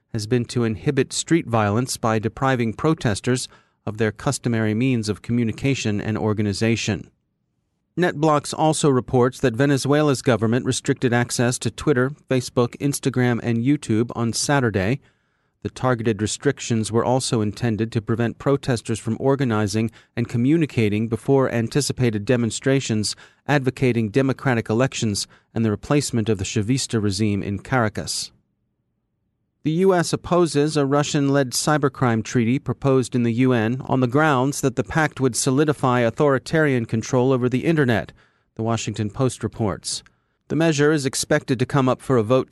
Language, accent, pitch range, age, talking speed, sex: English, American, 115-140 Hz, 40-59, 140 wpm, male